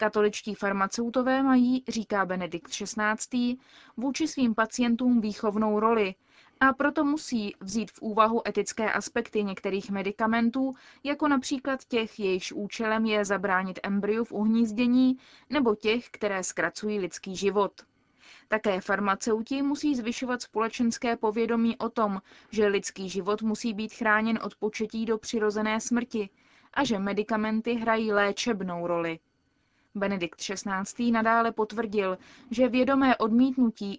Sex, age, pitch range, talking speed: female, 20-39, 200-245 Hz, 120 wpm